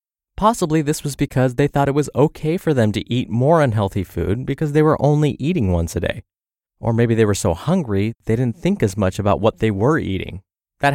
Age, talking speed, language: 20-39, 225 wpm, English